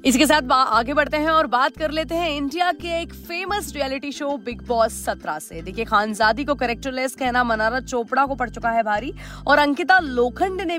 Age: 30-49